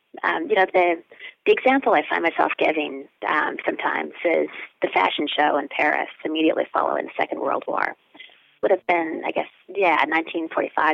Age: 30-49